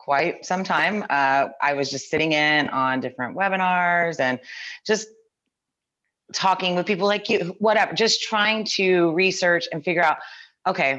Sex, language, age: female, English, 30-49